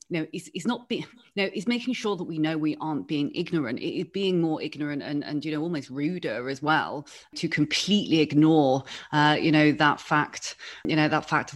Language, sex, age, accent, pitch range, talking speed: English, female, 30-49, British, 145-170 Hz, 235 wpm